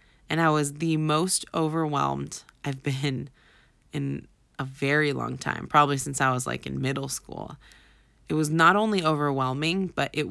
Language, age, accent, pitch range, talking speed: English, 20-39, American, 135-165 Hz, 165 wpm